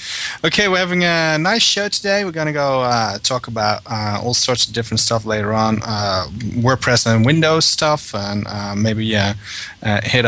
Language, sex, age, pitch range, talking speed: English, male, 20-39, 110-135 Hz, 180 wpm